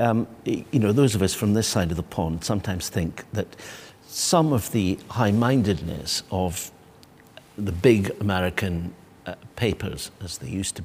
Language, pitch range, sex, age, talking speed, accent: English, 95-135 Hz, male, 60-79, 160 wpm, British